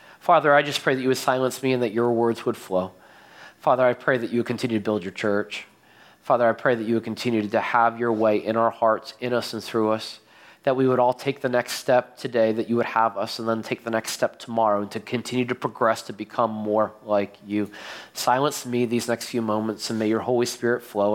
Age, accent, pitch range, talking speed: 30-49, American, 110-125 Hz, 250 wpm